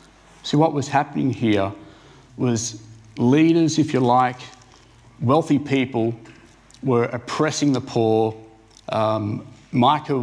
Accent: Australian